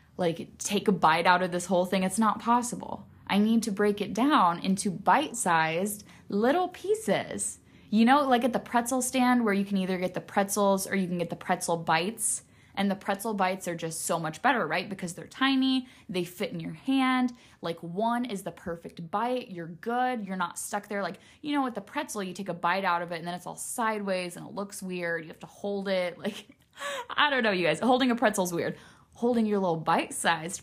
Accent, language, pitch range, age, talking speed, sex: American, English, 185-230 Hz, 10-29, 225 wpm, female